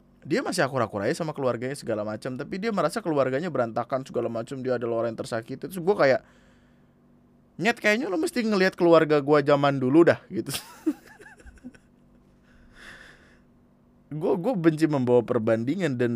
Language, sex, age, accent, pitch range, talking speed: Indonesian, male, 20-39, native, 105-140 Hz, 135 wpm